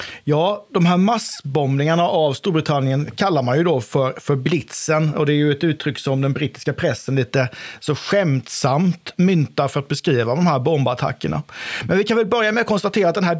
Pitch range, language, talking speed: 140-180 Hz, Swedish, 195 wpm